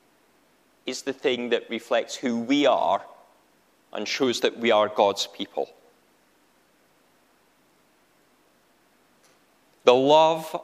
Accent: British